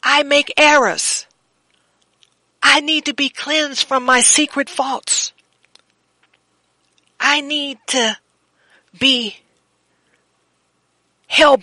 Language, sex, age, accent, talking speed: English, female, 40-59, American, 90 wpm